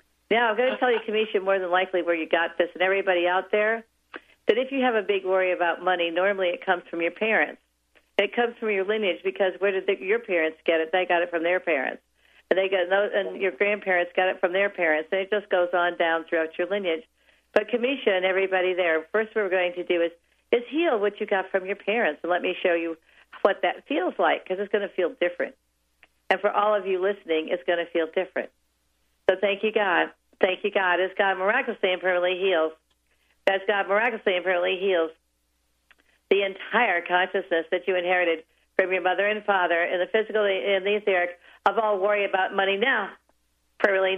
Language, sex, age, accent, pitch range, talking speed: English, female, 50-69, American, 170-200 Hz, 220 wpm